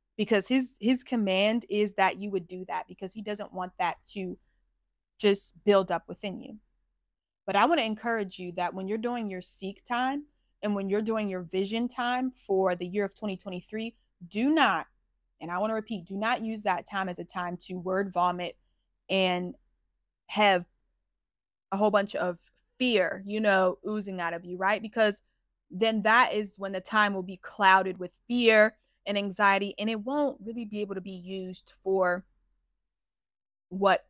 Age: 20-39